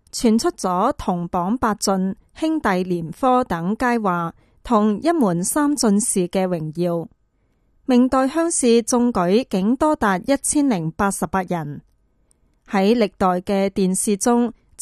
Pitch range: 185-255 Hz